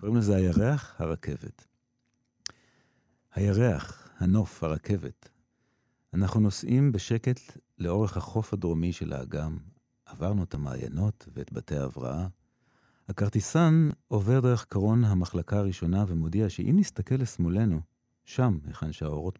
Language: Hebrew